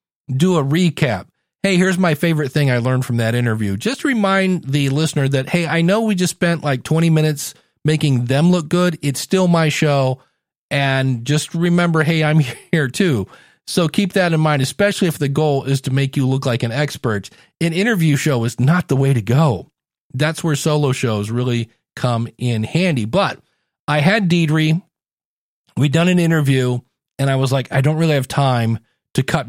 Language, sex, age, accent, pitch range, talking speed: English, male, 40-59, American, 130-160 Hz, 195 wpm